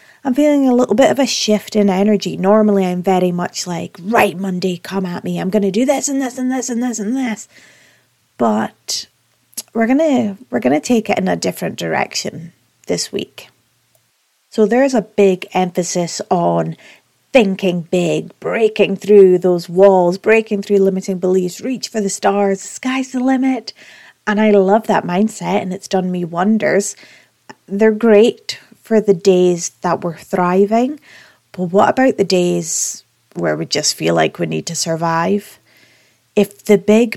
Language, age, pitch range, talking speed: English, 30-49, 180-220 Hz, 175 wpm